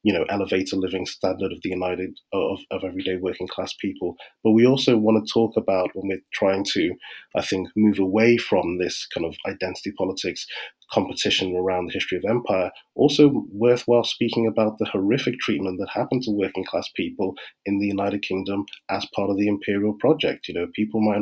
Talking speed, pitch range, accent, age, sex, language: 195 wpm, 100-110 Hz, British, 30-49, male, English